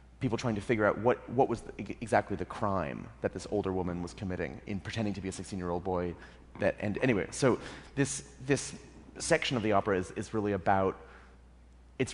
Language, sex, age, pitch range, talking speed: English, male, 30-49, 95-120 Hz, 195 wpm